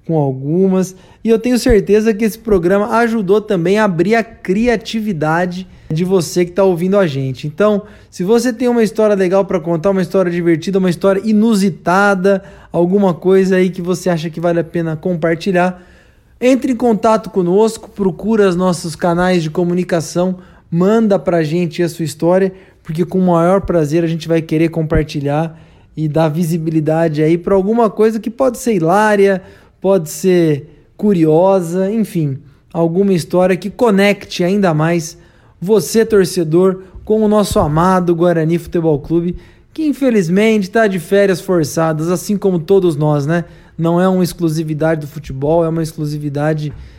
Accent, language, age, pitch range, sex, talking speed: Brazilian, Portuguese, 20-39, 165-200 Hz, male, 160 wpm